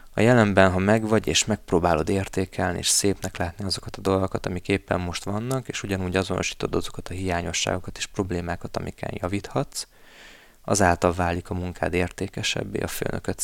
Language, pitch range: Hungarian, 90-100 Hz